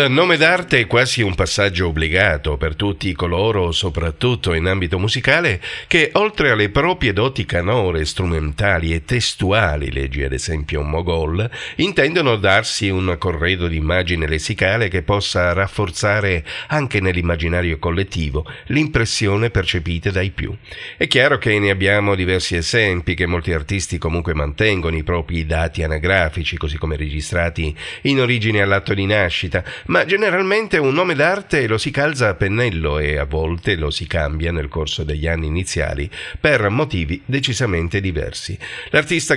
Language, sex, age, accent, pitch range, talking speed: Italian, male, 50-69, native, 85-110 Hz, 145 wpm